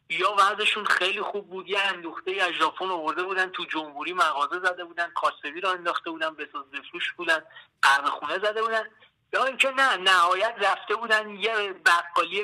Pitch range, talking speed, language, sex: 170-210 Hz, 165 wpm, Persian, male